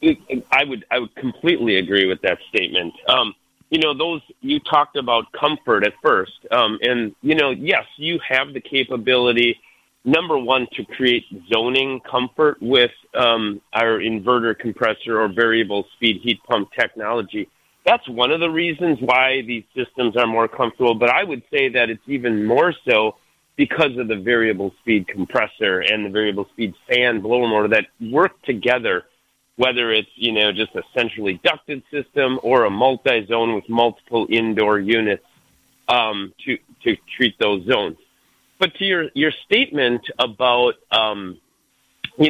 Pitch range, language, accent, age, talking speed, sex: 110-135 Hz, English, American, 40-59, 155 wpm, male